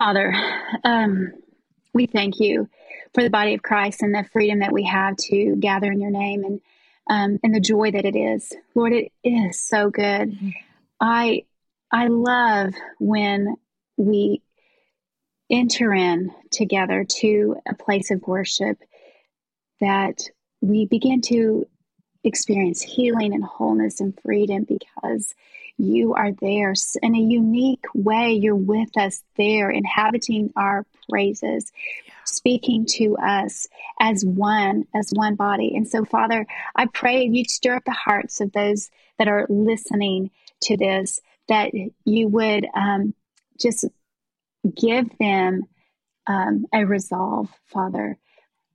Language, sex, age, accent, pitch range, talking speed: English, female, 30-49, American, 200-235 Hz, 135 wpm